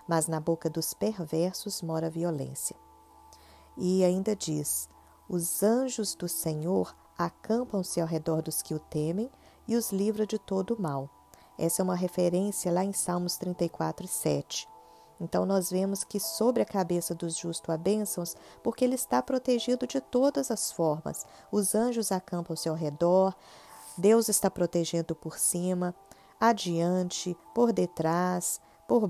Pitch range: 170-220 Hz